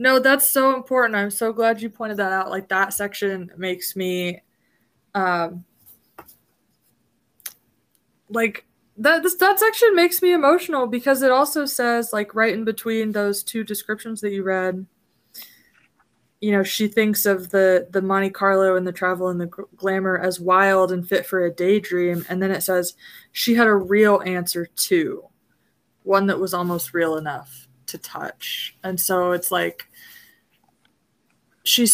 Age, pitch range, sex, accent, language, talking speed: 20-39, 180-220 Hz, female, American, English, 155 wpm